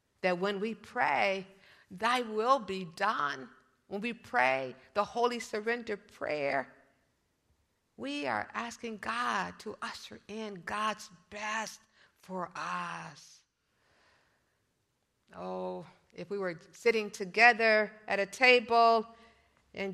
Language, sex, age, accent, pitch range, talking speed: English, female, 50-69, American, 185-230 Hz, 110 wpm